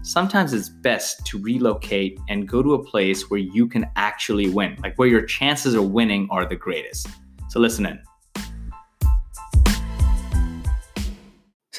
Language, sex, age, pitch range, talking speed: English, male, 20-39, 95-115 Hz, 145 wpm